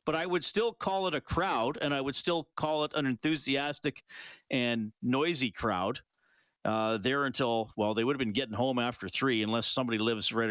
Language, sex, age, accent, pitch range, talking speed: English, male, 40-59, American, 115-160 Hz, 200 wpm